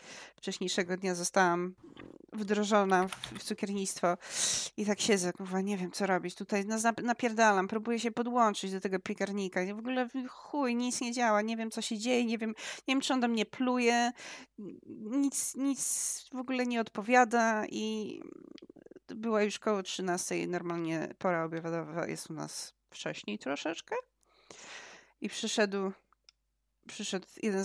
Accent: native